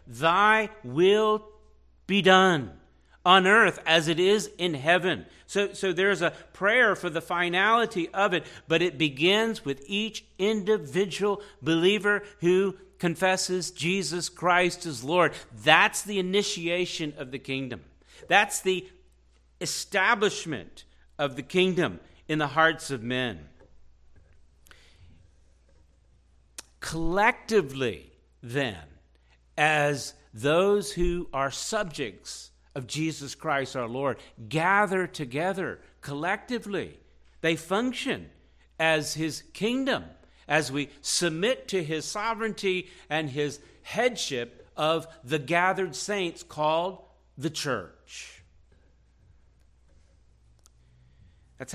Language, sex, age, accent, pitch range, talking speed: English, male, 50-69, American, 120-185 Hz, 100 wpm